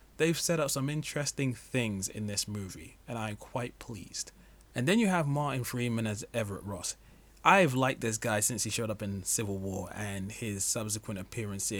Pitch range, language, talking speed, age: 105-140 Hz, English, 190 wpm, 20-39